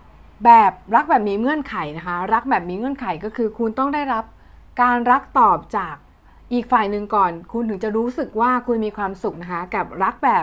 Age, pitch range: 20-39, 210-265 Hz